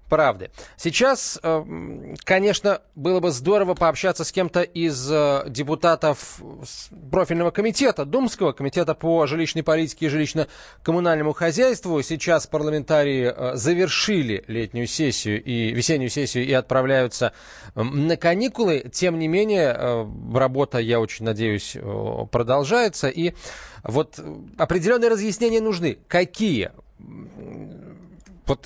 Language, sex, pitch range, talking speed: Russian, male, 125-185 Hz, 100 wpm